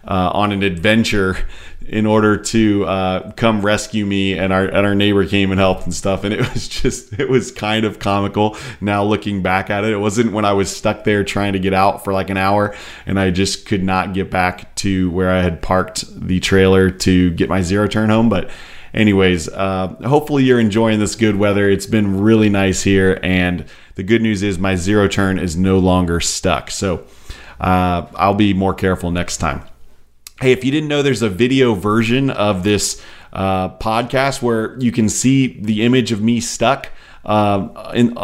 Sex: male